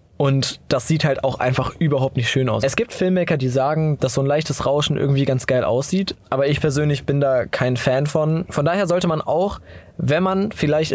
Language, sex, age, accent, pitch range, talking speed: German, male, 20-39, German, 135-155 Hz, 220 wpm